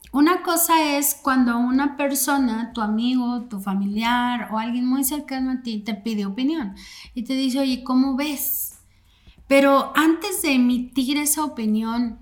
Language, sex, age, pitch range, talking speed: Spanish, female, 30-49, 220-280 Hz, 150 wpm